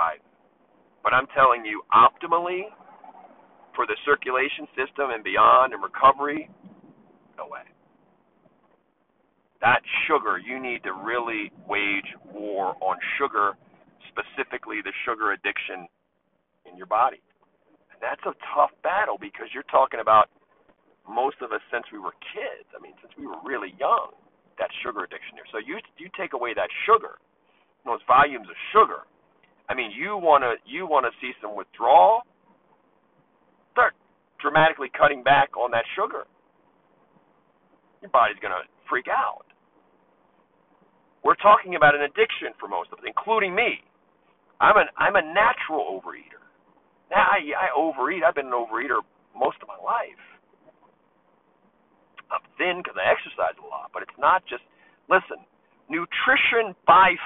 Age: 50-69